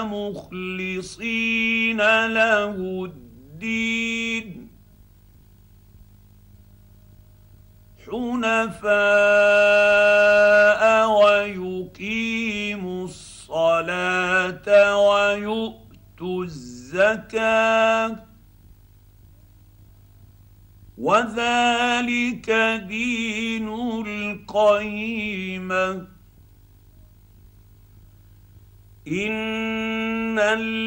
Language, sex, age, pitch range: Arabic, male, 50-69, 160-225 Hz